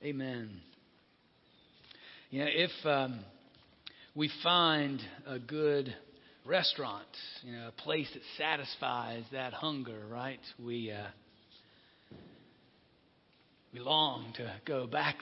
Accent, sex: American, male